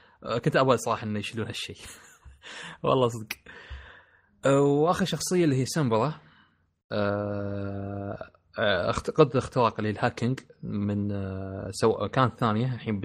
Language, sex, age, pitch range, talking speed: Arabic, male, 20-39, 100-125 Hz, 110 wpm